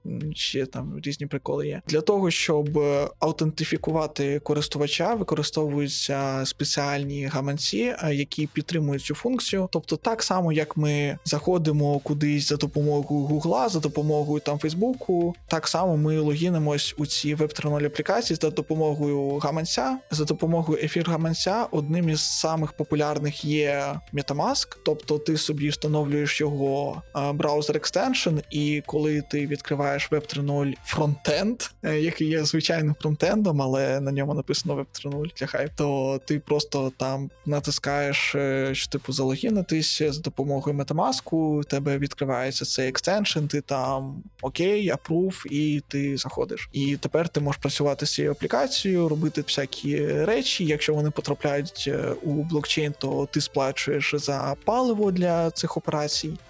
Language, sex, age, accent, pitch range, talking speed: Ukrainian, male, 20-39, native, 145-160 Hz, 130 wpm